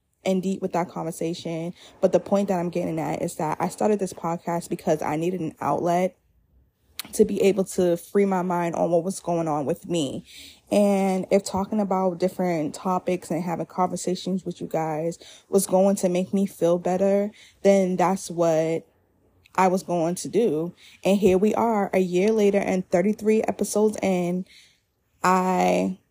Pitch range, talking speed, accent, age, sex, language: 170-195 Hz, 175 wpm, American, 20-39, female, English